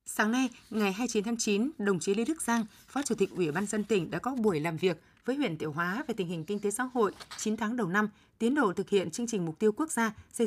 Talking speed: 280 wpm